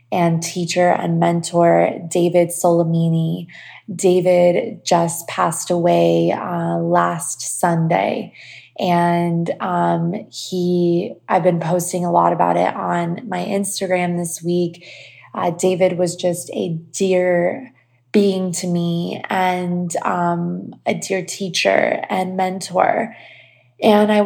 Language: English